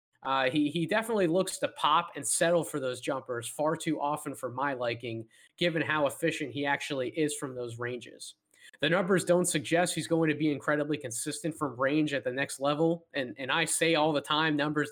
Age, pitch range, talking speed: 20-39, 145-170 Hz, 205 wpm